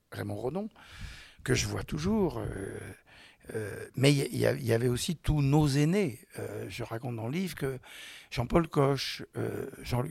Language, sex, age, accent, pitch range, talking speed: French, male, 60-79, French, 115-140 Hz, 165 wpm